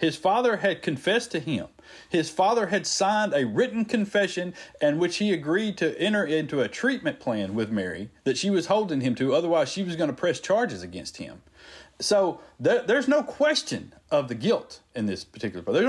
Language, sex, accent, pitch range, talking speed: English, male, American, 110-180 Hz, 195 wpm